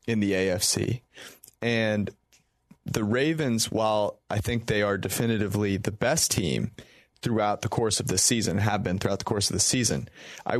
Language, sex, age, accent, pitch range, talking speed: English, male, 30-49, American, 105-120 Hz, 170 wpm